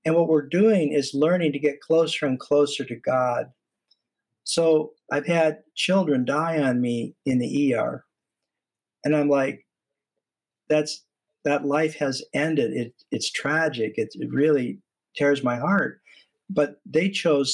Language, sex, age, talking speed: English, male, 50-69, 145 wpm